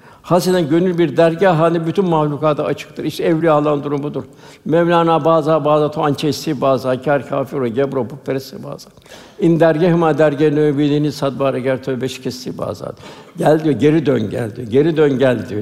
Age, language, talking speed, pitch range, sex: 60-79, Turkish, 155 wpm, 140-165 Hz, male